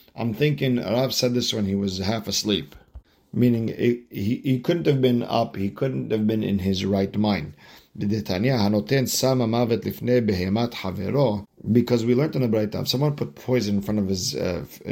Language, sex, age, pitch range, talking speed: English, male, 50-69, 100-125 Hz, 165 wpm